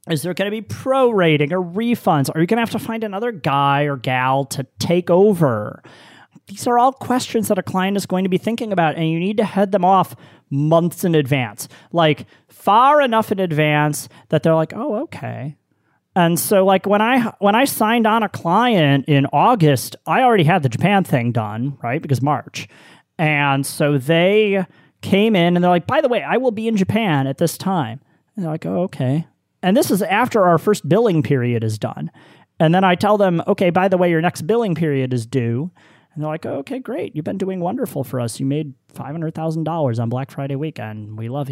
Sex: male